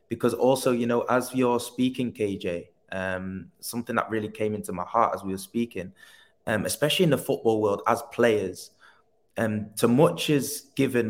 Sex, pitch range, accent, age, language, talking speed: male, 105-120 Hz, British, 20-39, English, 180 wpm